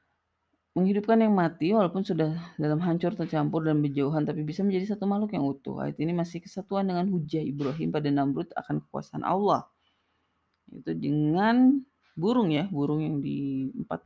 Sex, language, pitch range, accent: female, Indonesian, 140-195 Hz, native